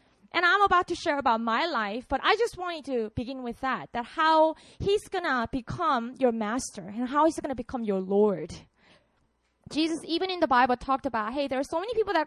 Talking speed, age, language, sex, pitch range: 225 wpm, 20-39, English, female, 235-330 Hz